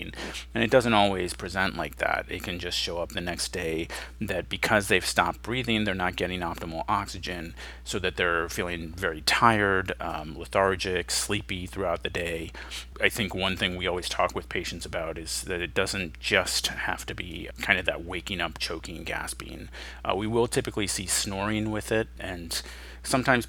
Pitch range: 85-105 Hz